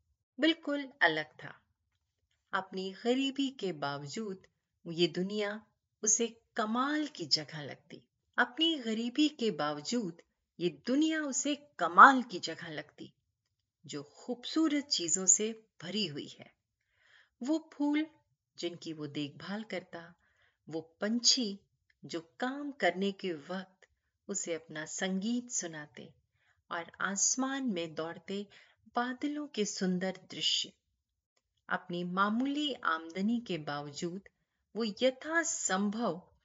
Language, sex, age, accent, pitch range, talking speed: Hindi, female, 30-49, native, 160-245 Hz, 105 wpm